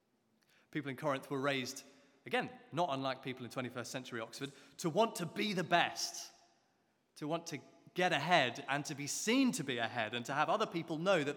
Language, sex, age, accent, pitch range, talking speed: English, male, 30-49, British, 120-180 Hz, 200 wpm